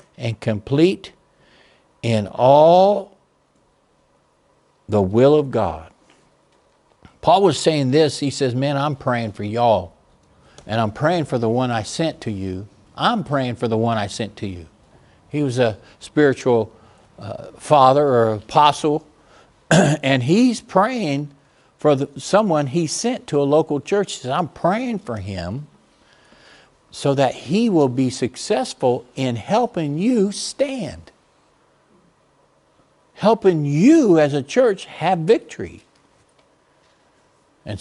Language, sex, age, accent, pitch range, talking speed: English, male, 60-79, American, 120-175 Hz, 130 wpm